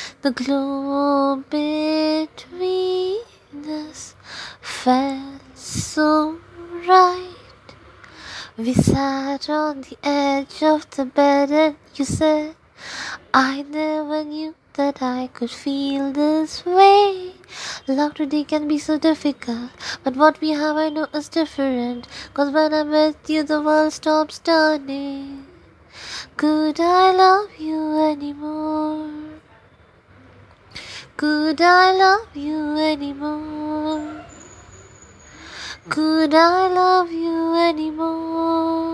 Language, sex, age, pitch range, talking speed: English, female, 20-39, 255-310 Hz, 90 wpm